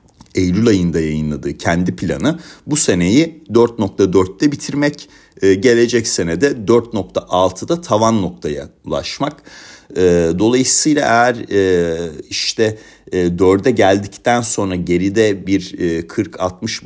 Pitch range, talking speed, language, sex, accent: 90-120 Hz, 85 wpm, Turkish, male, native